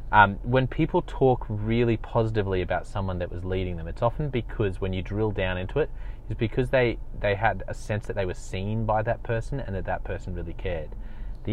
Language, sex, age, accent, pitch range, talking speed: English, male, 30-49, Australian, 95-115 Hz, 220 wpm